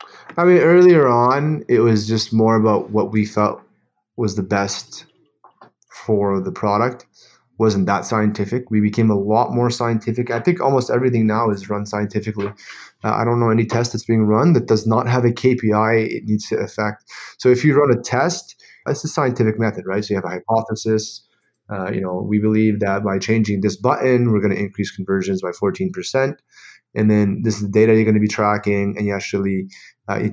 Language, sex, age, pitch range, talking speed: English, male, 20-39, 105-120 Hz, 205 wpm